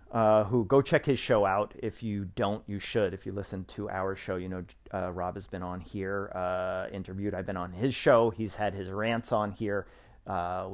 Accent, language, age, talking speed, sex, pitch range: American, English, 40-59, 225 wpm, male, 95-125 Hz